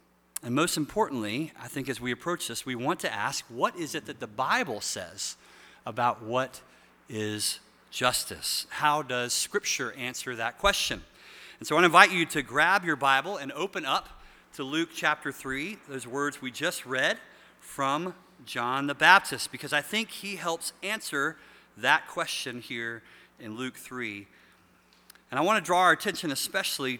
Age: 40-59